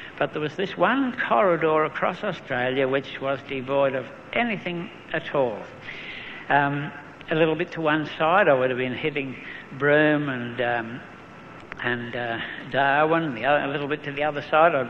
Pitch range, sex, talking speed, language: 130-160 Hz, male, 175 wpm, English